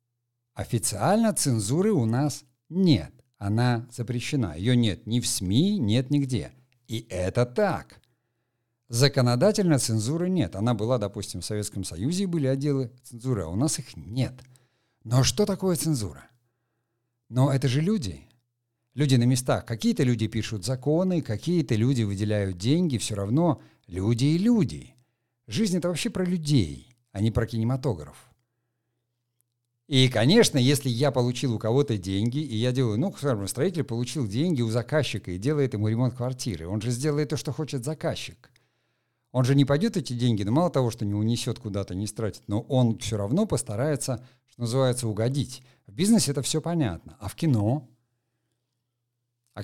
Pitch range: 115-145 Hz